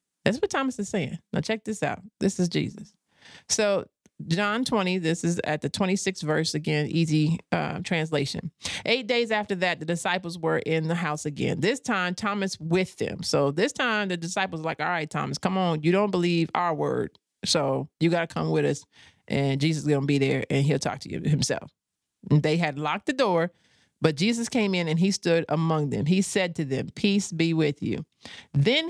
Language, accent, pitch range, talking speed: English, American, 155-205 Hz, 210 wpm